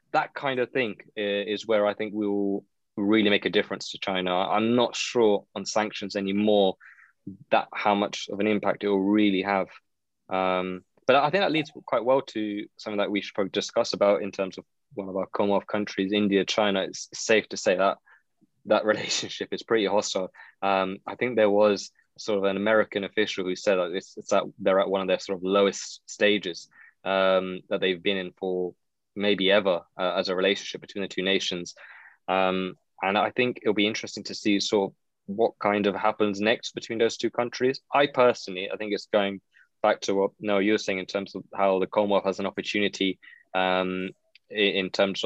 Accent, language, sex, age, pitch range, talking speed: British, English, male, 20-39, 95-105 Hz, 205 wpm